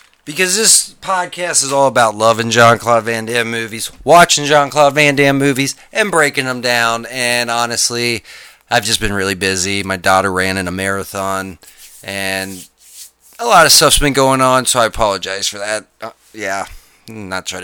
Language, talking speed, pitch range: English, 170 wpm, 115-155 Hz